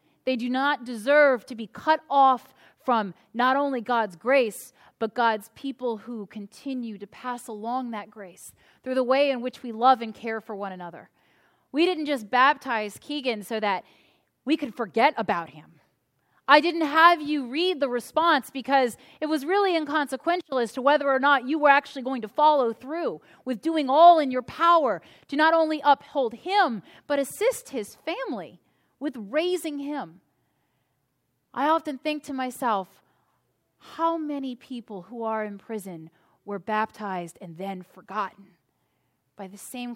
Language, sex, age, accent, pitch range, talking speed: English, female, 30-49, American, 220-290 Hz, 165 wpm